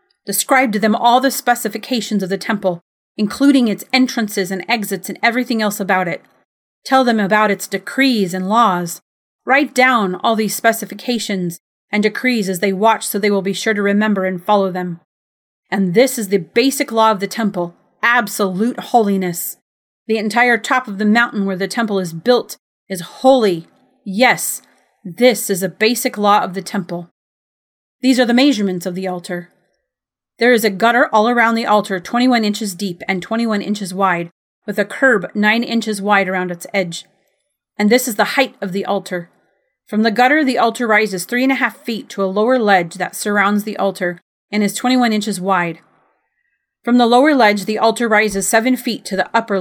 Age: 30-49